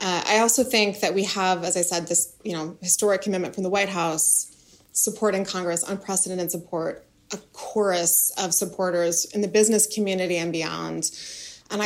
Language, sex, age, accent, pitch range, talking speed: English, female, 20-39, American, 180-220 Hz, 170 wpm